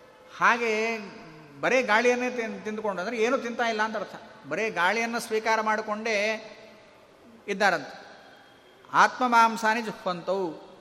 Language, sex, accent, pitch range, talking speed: Kannada, male, native, 195-235 Hz, 105 wpm